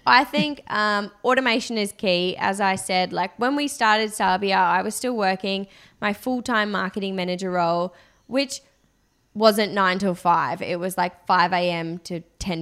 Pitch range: 180-210 Hz